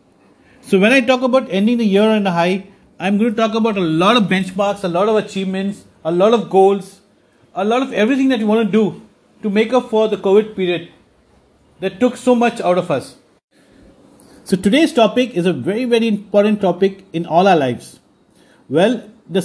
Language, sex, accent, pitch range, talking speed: English, male, Indian, 180-225 Hz, 205 wpm